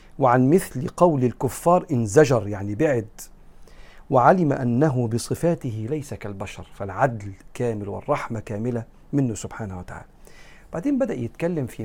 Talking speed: 120 wpm